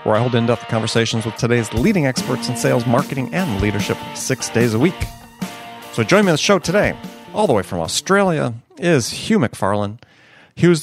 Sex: male